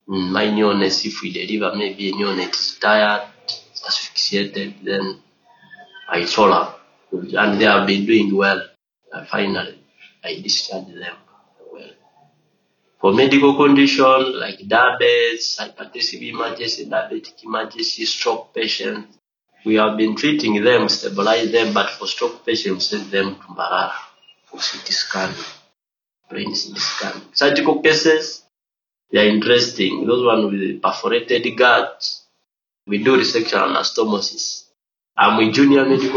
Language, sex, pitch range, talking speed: English, male, 100-135 Hz, 130 wpm